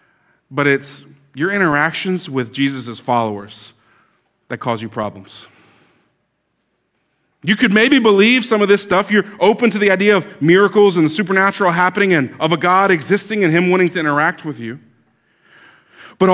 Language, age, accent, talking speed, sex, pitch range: English, 40-59, American, 160 wpm, male, 135-185 Hz